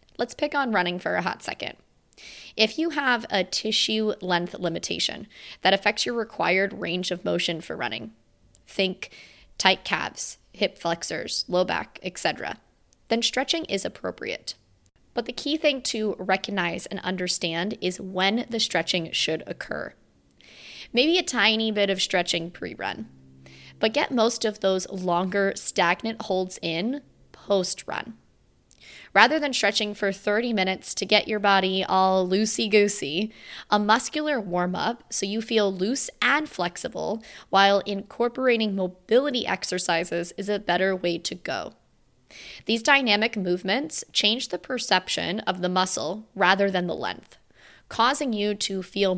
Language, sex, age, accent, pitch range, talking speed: English, female, 20-39, American, 180-225 Hz, 140 wpm